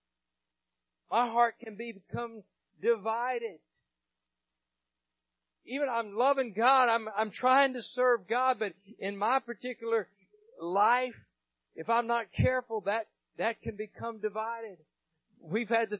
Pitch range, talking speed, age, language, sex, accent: 195-240 Hz, 125 wpm, 50-69, English, male, American